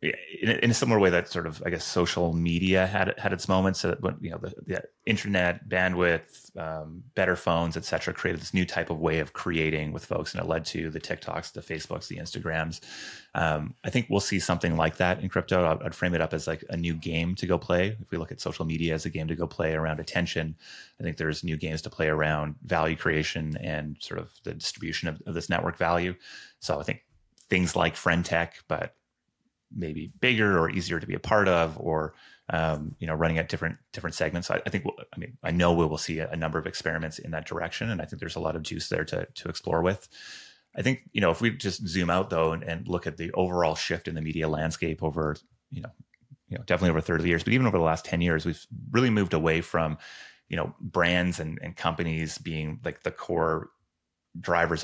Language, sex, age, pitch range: English, male, 30-49, 80-90 Hz